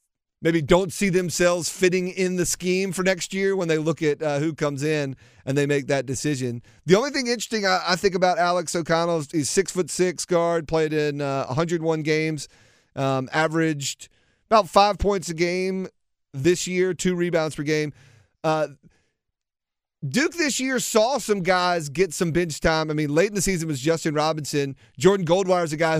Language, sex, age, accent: English, male, 30-49, American